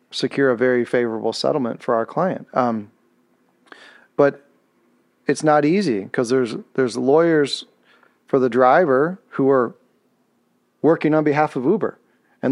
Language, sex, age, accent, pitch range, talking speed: English, male, 40-59, American, 120-150 Hz, 135 wpm